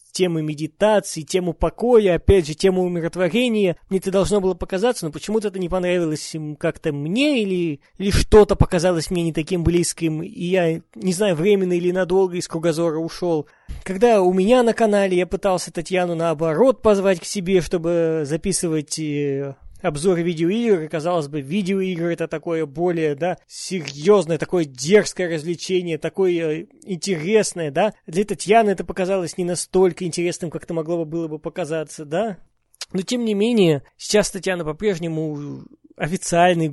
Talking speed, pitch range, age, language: 150 wpm, 155-195 Hz, 20-39, Russian